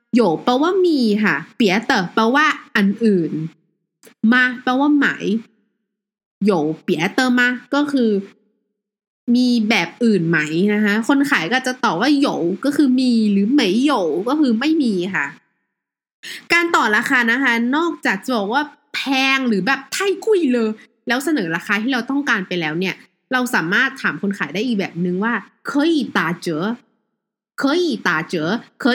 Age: 20-39